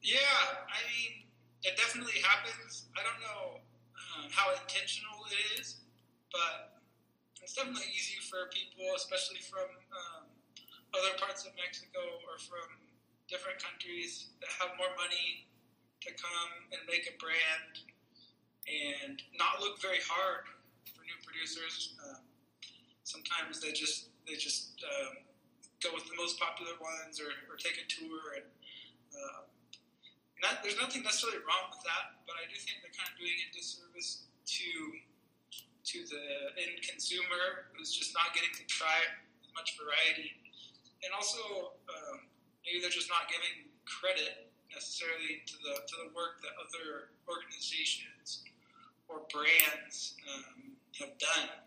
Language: Spanish